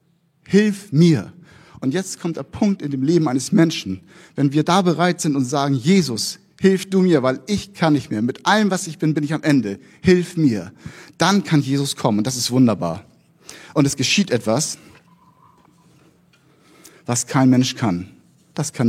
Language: German